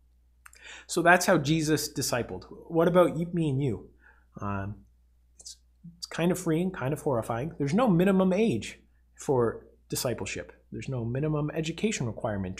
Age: 30-49